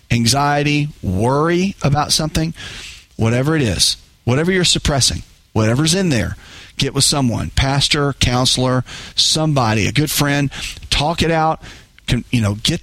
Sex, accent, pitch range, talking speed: male, American, 120-155 Hz, 130 wpm